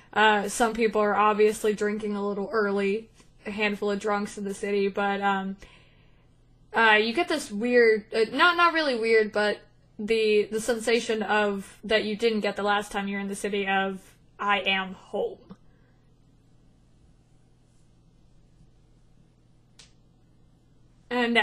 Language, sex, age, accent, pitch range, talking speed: English, female, 20-39, American, 205-220 Hz, 130 wpm